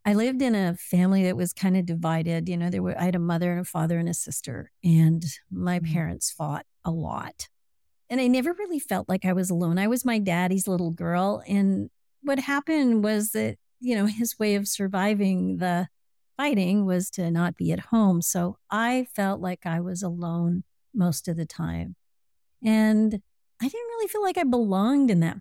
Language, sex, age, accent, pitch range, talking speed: English, female, 50-69, American, 175-225 Hz, 200 wpm